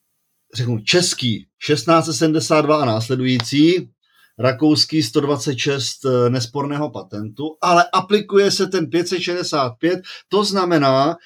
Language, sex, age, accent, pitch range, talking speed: Czech, male, 40-59, native, 125-160 Hz, 85 wpm